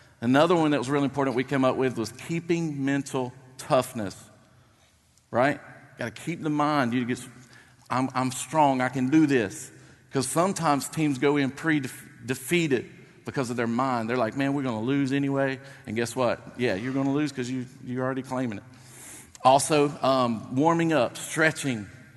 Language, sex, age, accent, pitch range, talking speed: English, male, 50-69, American, 120-145 Hz, 175 wpm